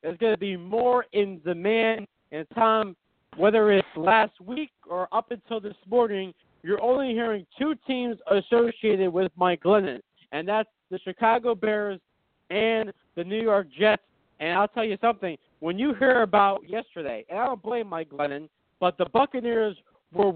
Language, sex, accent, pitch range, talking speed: English, male, American, 185-230 Hz, 170 wpm